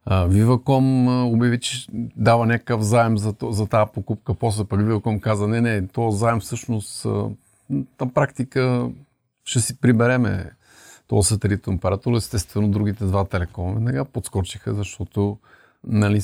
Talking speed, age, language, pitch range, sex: 145 wpm, 40-59, Bulgarian, 100-115 Hz, male